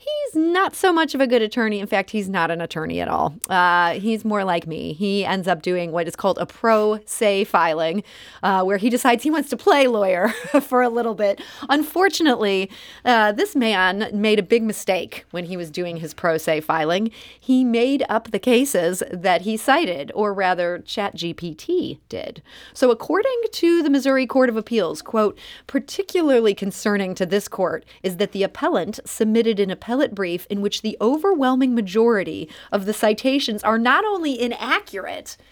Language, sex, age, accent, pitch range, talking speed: English, female, 30-49, American, 190-270 Hz, 180 wpm